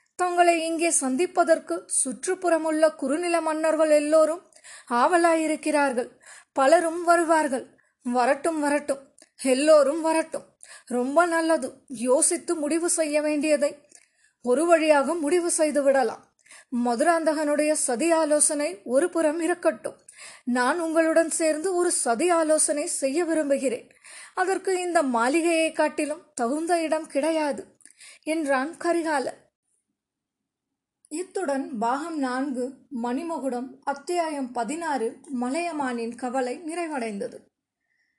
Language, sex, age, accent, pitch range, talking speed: Tamil, female, 20-39, native, 265-335 Hz, 85 wpm